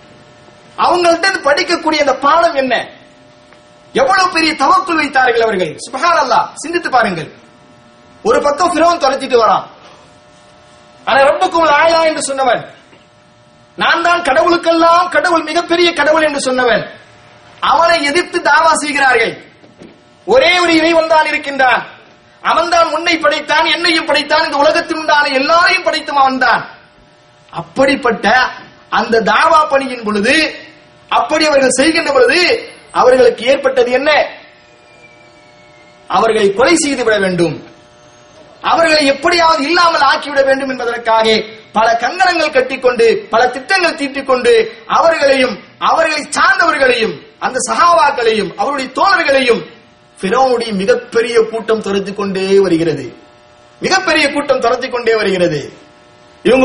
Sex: male